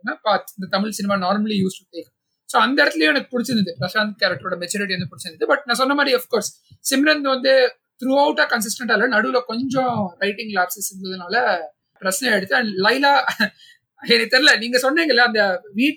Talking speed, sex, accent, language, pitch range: 265 wpm, male, native, Tamil, 200-265 Hz